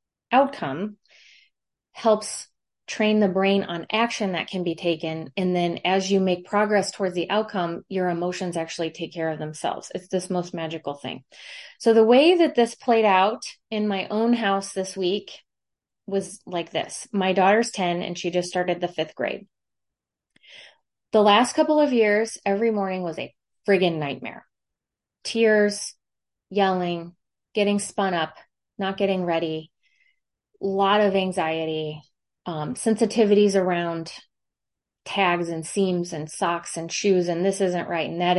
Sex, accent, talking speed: female, American, 150 wpm